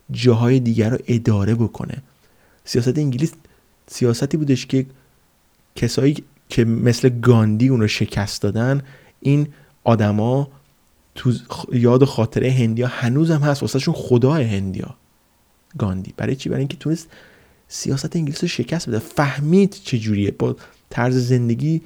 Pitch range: 105-130 Hz